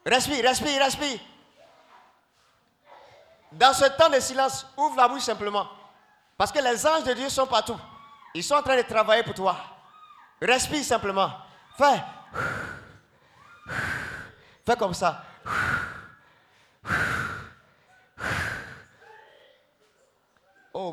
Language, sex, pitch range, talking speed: French, male, 200-300 Hz, 100 wpm